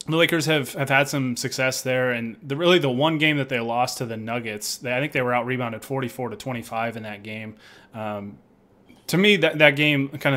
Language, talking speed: English, 225 wpm